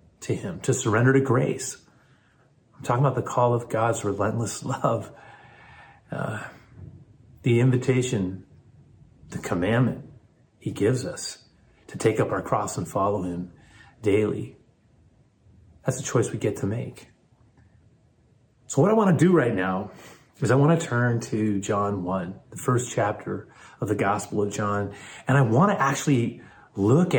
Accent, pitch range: American, 105-140 Hz